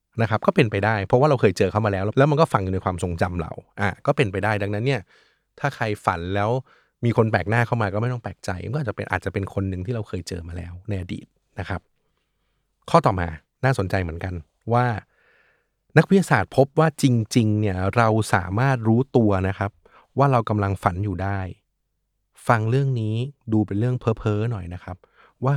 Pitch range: 100-125 Hz